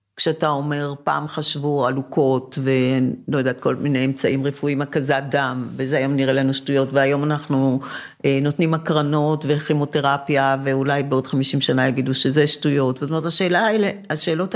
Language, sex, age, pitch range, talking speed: Hebrew, female, 50-69, 145-210 Hz, 145 wpm